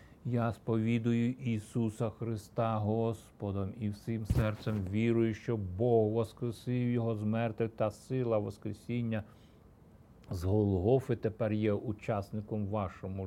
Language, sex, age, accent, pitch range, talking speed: Ukrainian, male, 50-69, native, 105-120 Hz, 105 wpm